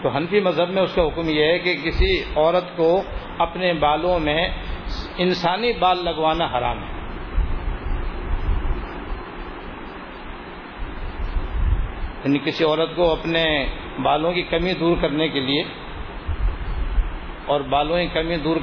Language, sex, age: Urdu, male, 50-69